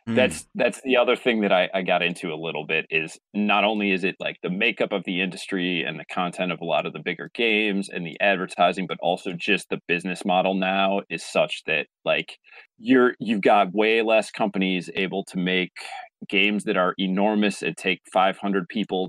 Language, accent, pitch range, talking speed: English, American, 90-105 Hz, 205 wpm